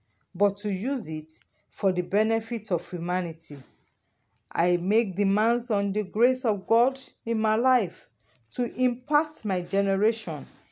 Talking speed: 135 wpm